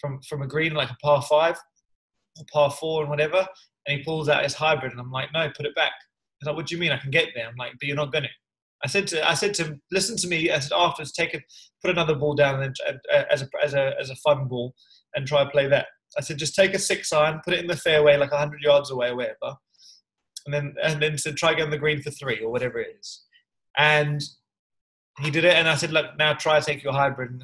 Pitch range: 135-165 Hz